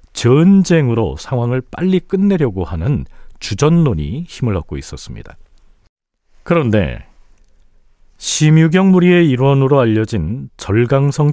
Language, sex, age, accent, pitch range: Korean, male, 40-59, native, 100-145 Hz